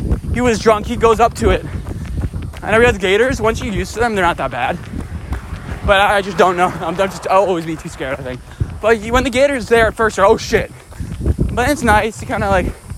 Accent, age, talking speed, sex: American, 20-39, 250 wpm, male